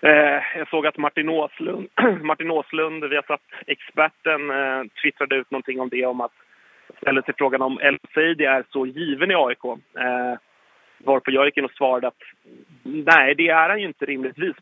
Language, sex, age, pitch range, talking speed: Swedish, male, 30-49, 130-155 Hz, 170 wpm